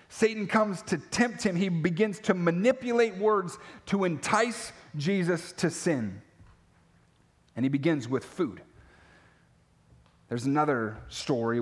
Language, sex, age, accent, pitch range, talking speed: English, male, 30-49, American, 145-220 Hz, 120 wpm